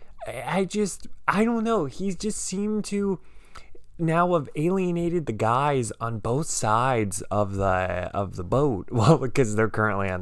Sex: male